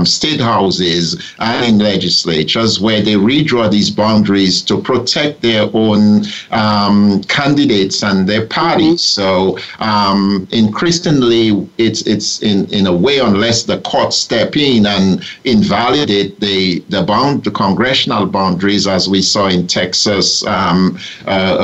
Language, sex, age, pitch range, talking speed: English, male, 50-69, 95-115 Hz, 135 wpm